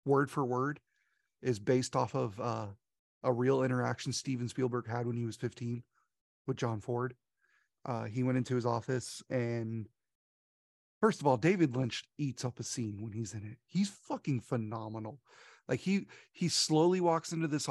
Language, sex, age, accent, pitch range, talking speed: English, male, 30-49, American, 115-145 Hz, 175 wpm